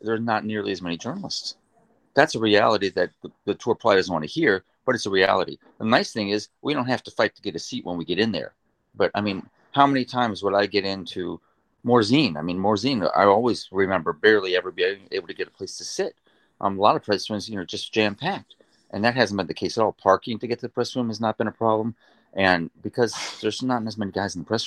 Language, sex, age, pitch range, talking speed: English, male, 30-49, 85-115 Hz, 260 wpm